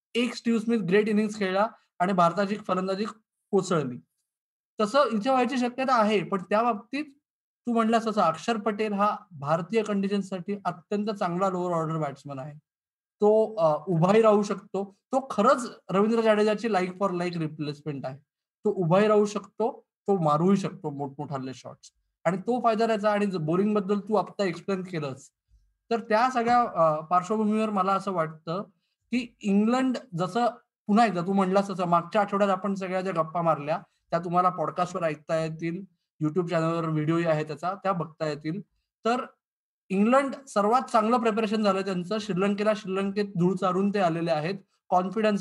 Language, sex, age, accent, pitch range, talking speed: Marathi, male, 20-39, native, 170-215 Hz, 135 wpm